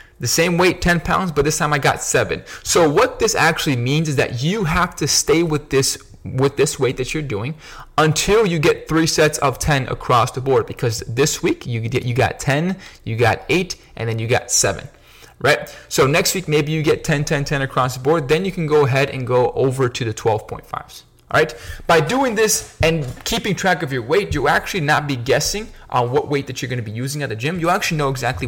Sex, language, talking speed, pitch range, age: male, English, 235 wpm, 120-160 Hz, 20-39